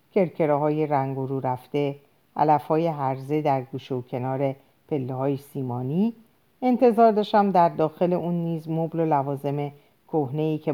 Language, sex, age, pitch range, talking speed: Persian, female, 50-69, 140-205 Hz, 130 wpm